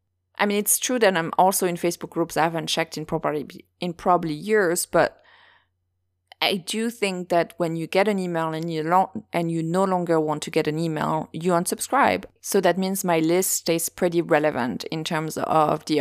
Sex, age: female, 20-39